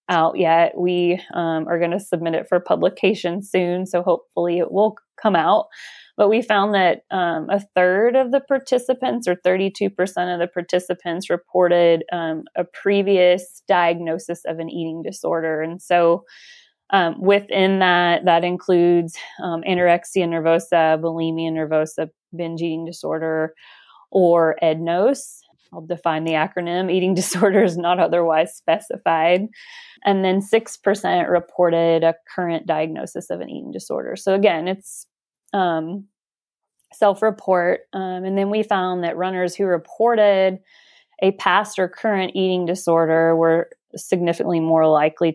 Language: English